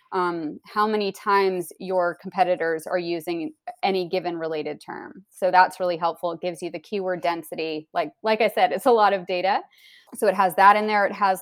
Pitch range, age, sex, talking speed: 175-200 Hz, 20-39, female, 205 wpm